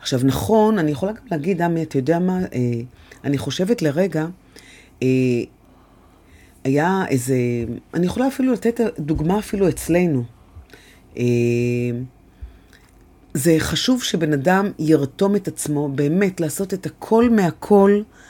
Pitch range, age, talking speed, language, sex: 125-180 Hz, 30-49, 120 wpm, Hebrew, female